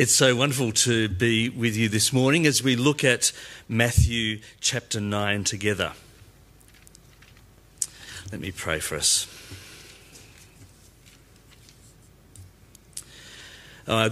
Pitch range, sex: 100-125 Hz, male